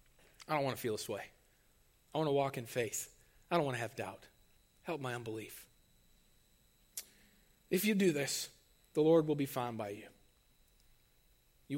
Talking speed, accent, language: 175 wpm, American, English